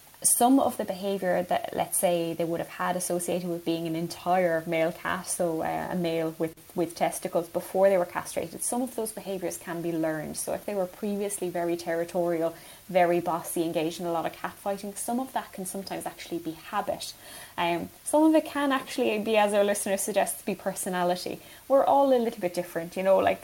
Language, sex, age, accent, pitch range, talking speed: English, female, 10-29, Irish, 170-195 Hz, 215 wpm